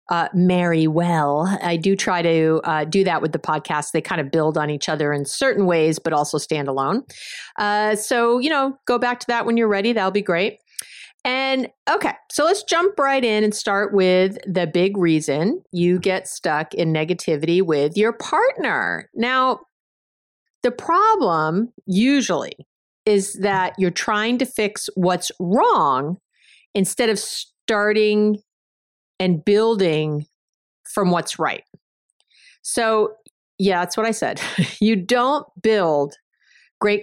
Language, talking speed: English, 150 wpm